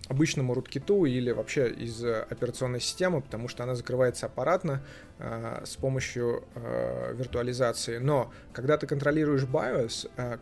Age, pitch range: 20-39, 120-140 Hz